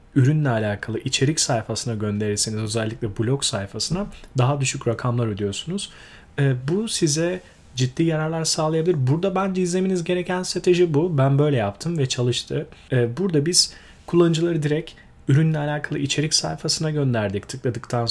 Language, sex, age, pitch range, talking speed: Turkish, male, 30-49, 120-165 Hz, 125 wpm